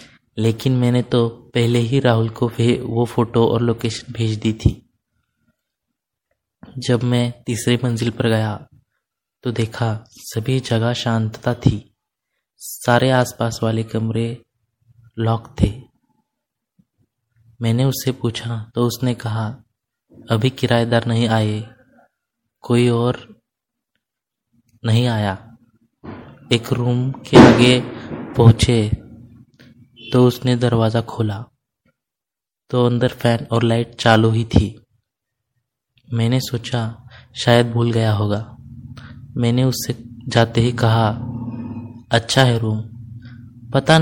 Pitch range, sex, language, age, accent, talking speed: 115-125 Hz, male, Hindi, 20-39, native, 105 wpm